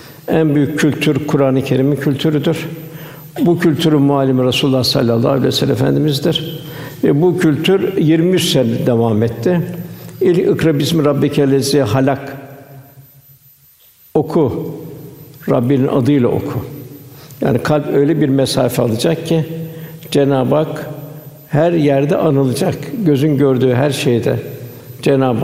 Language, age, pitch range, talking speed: Turkish, 60-79, 135-155 Hz, 115 wpm